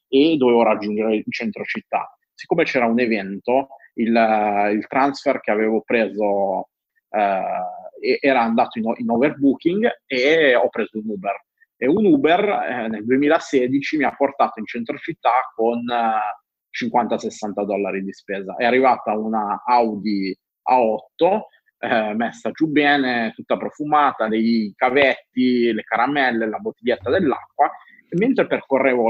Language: Italian